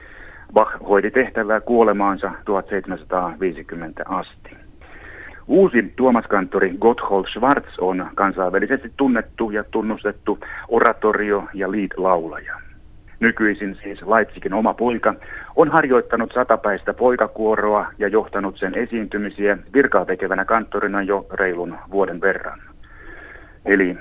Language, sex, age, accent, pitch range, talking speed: Finnish, male, 60-79, native, 100-115 Hz, 95 wpm